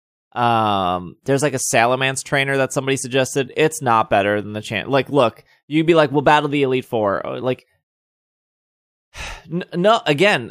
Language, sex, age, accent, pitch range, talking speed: English, male, 20-39, American, 110-150 Hz, 160 wpm